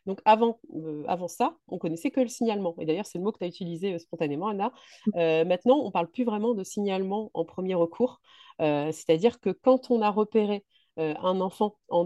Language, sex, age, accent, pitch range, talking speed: French, female, 30-49, French, 165-210 Hz, 230 wpm